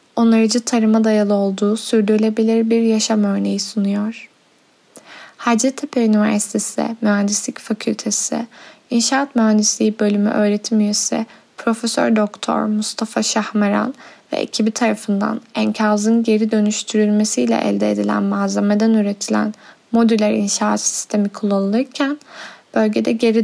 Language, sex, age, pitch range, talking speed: Turkish, female, 10-29, 205-230 Hz, 95 wpm